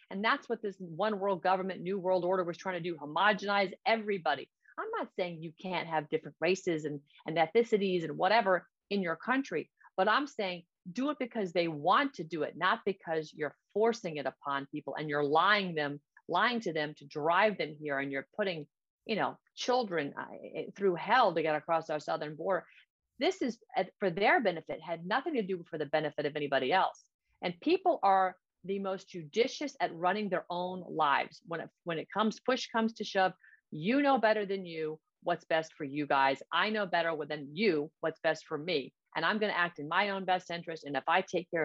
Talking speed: 205 wpm